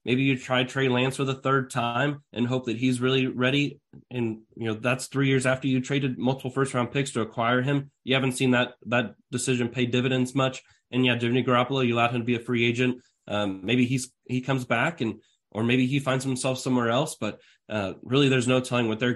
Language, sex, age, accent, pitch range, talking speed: English, male, 20-39, American, 115-135 Hz, 230 wpm